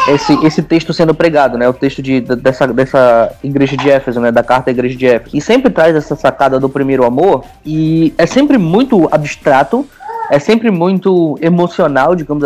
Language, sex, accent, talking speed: Portuguese, male, Brazilian, 195 wpm